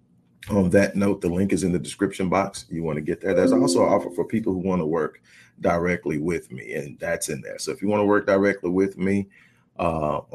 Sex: male